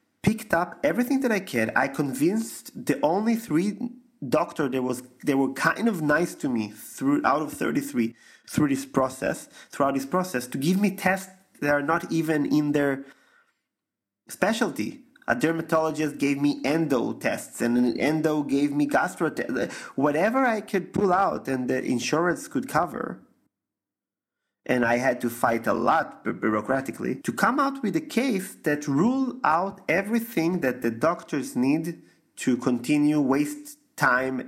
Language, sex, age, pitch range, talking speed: English, male, 30-49, 130-200 Hz, 160 wpm